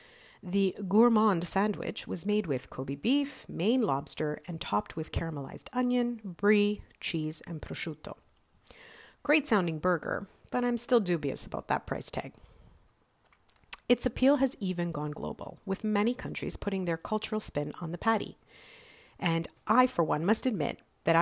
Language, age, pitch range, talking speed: English, 40-59, 160-240 Hz, 150 wpm